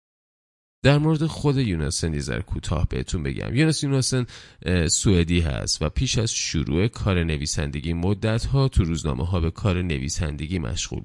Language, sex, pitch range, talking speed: Persian, male, 80-110 Hz, 145 wpm